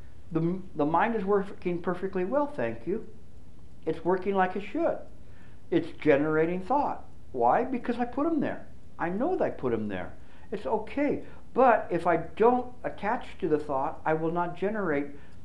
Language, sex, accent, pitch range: English, male, American, 125-195 Hz